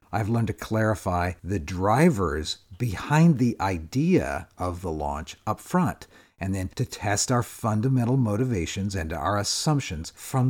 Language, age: English, 50-69